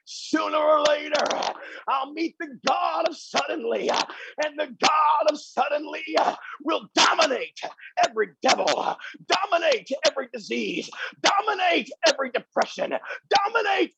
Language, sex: English, male